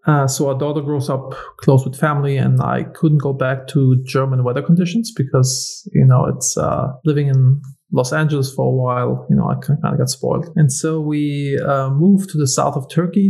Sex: male